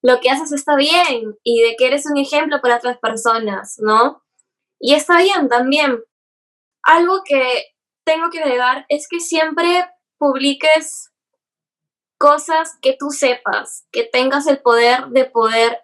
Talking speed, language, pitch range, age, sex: 145 wpm, Spanish, 230-285 Hz, 10-29, female